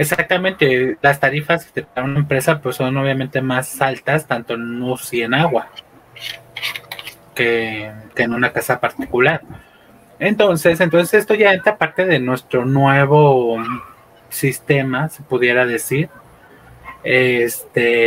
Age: 20-39